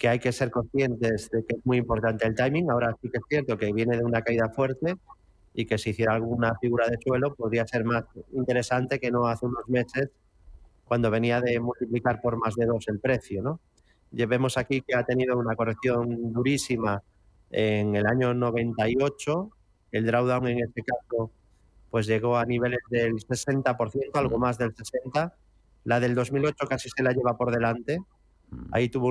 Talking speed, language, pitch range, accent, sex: 185 wpm, Spanish, 115-130 Hz, Spanish, male